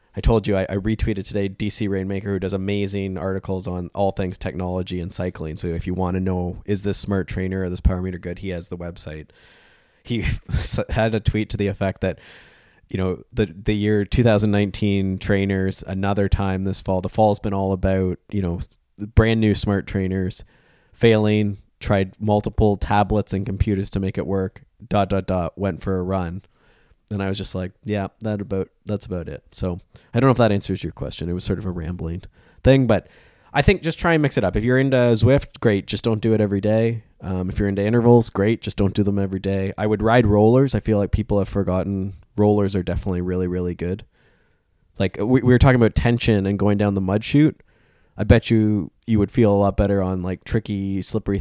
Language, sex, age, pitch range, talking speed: English, male, 20-39, 95-105 Hz, 220 wpm